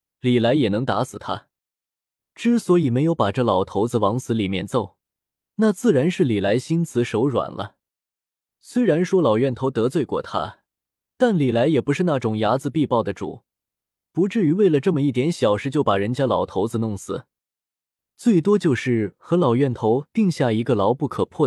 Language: Chinese